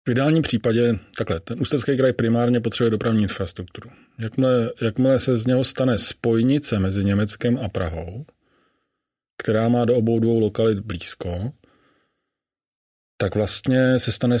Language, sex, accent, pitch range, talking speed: Czech, male, native, 100-120 Hz, 140 wpm